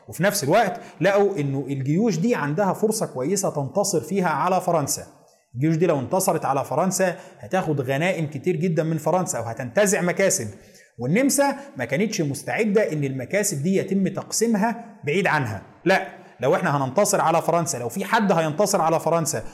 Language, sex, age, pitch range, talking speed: Arabic, male, 30-49, 150-205 Hz, 155 wpm